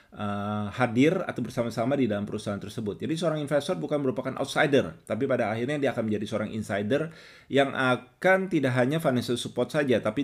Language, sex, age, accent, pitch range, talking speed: Indonesian, male, 20-39, native, 105-135 Hz, 170 wpm